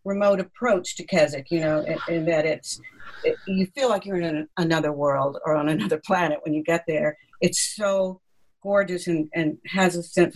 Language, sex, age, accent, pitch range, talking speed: English, female, 60-79, American, 170-200 Hz, 205 wpm